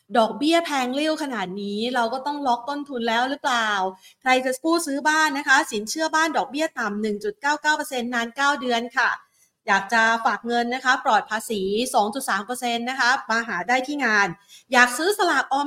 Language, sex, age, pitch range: Thai, female, 30-49, 220-290 Hz